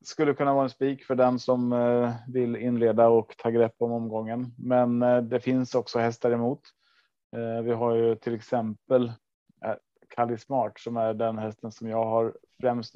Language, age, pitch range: Swedish, 20-39, 115-125 Hz